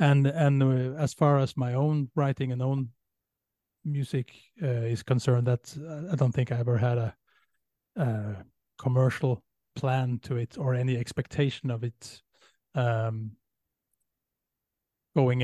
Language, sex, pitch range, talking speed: English, male, 120-140 Hz, 130 wpm